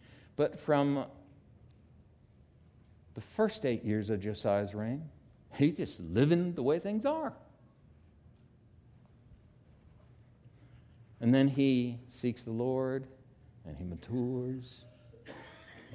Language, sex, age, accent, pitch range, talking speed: English, male, 60-79, American, 120-155 Hz, 100 wpm